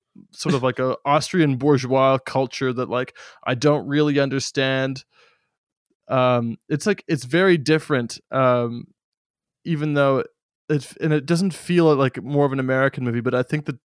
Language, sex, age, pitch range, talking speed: English, male, 20-39, 120-145 Hz, 160 wpm